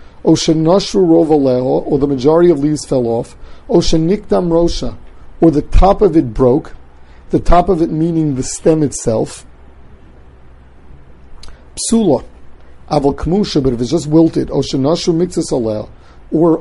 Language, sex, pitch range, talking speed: English, male, 120-160 Hz, 125 wpm